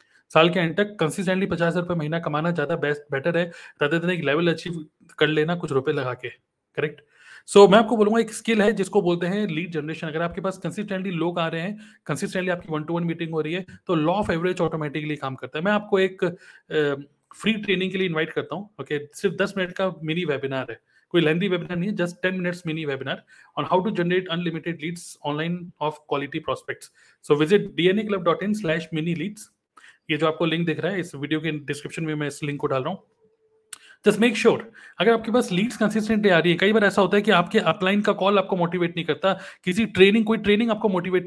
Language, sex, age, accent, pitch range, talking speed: Hindi, male, 30-49, native, 160-200 Hz, 225 wpm